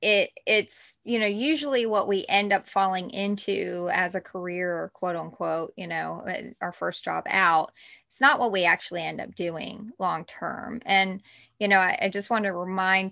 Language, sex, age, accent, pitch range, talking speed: English, female, 20-39, American, 180-225 Hz, 190 wpm